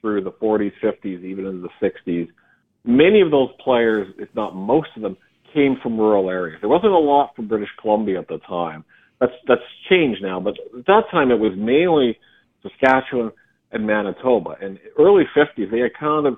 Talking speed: 185 wpm